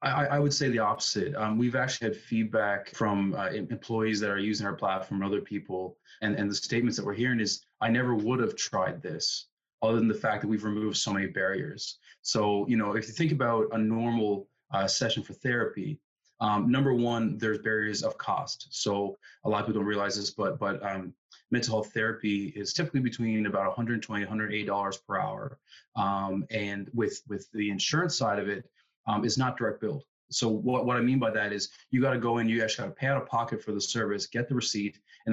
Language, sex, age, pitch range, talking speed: English, male, 20-39, 105-120 Hz, 225 wpm